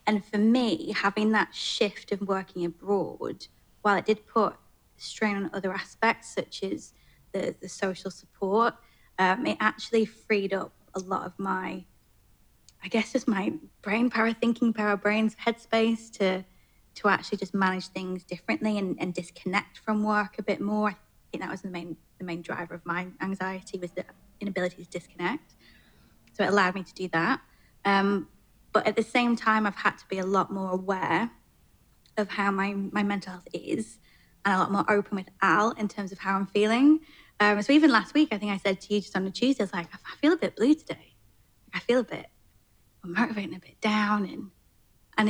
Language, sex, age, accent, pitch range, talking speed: English, female, 20-39, British, 185-215 Hz, 200 wpm